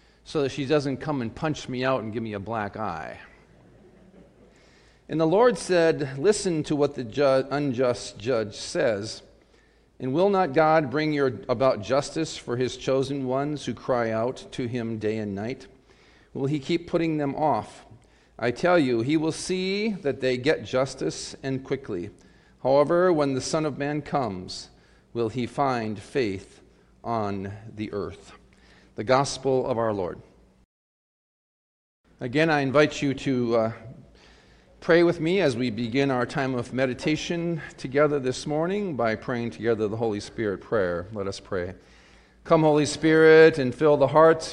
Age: 40-59